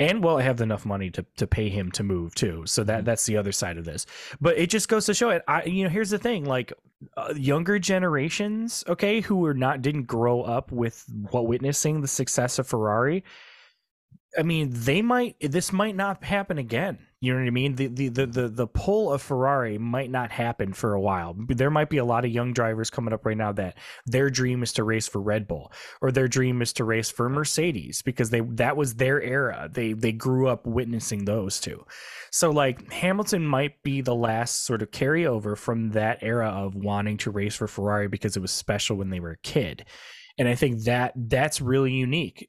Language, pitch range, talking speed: English, 115-150 Hz, 220 wpm